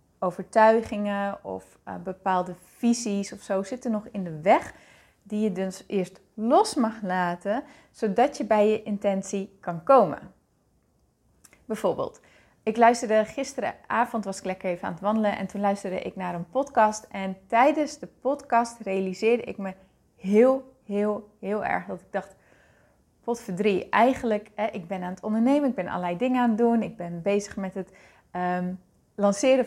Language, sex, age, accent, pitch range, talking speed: Dutch, female, 20-39, Dutch, 195-250 Hz, 160 wpm